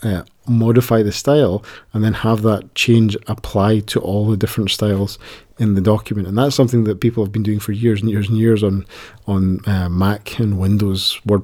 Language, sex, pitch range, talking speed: English, male, 100-125 Hz, 205 wpm